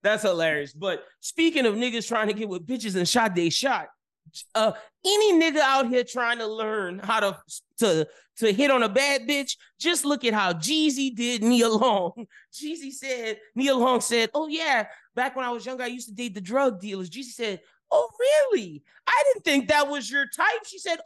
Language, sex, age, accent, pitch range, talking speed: English, male, 20-39, American, 200-280 Hz, 205 wpm